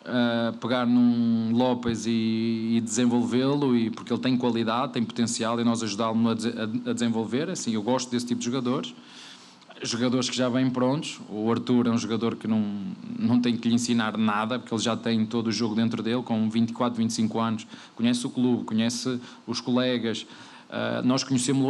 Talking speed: 190 wpm